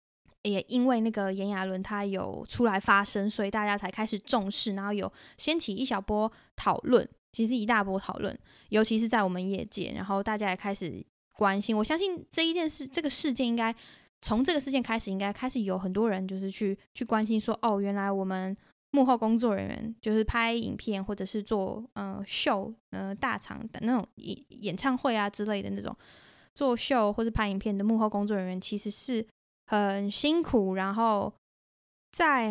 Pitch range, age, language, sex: 195-235 Hz, 10-29, Chinese, female